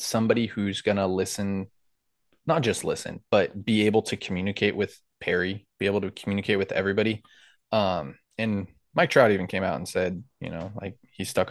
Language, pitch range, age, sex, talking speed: English, 95-110 Hz, 20-39, male, 175 wpm